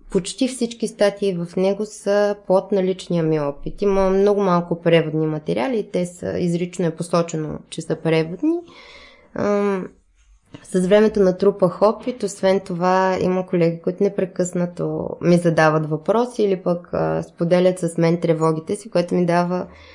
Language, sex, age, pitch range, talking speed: Bulgarian, female, 20-39, 175-225 Hz, 140 wpm